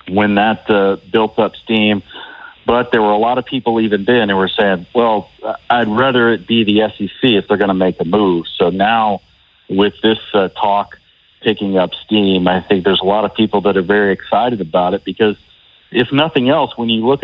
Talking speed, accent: 210 wpm, American